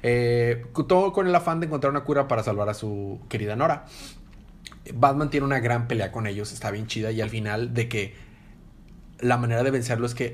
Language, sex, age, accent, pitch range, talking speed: Spanish, male, 30-49, Mexican, 115-140 Hz, 210 wpm